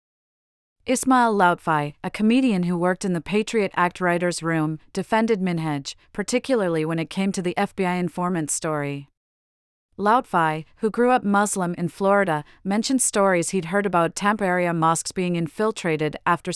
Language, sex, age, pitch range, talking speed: English, female, 30-49, 165-200 Hz, 150 wpm